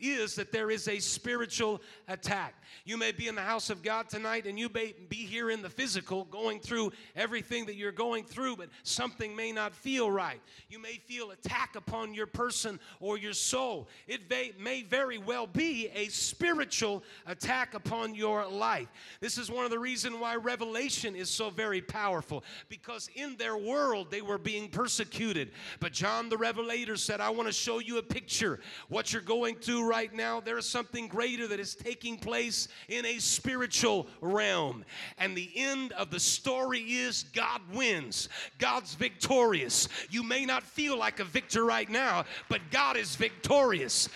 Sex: male